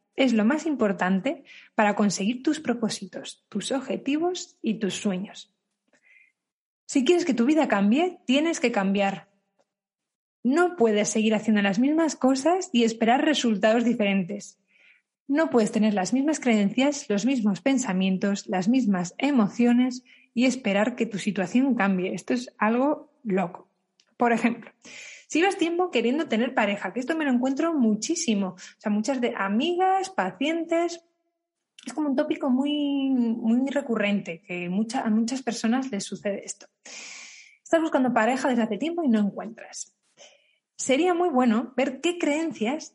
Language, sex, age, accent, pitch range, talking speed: Spanish, female, 20-39, Spanish, 205-285 Hz, 145 wpm